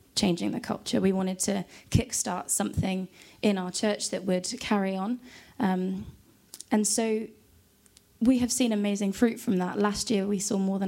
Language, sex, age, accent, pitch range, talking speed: English, female, 20-39, British, 190-220 Hz, 175 wpm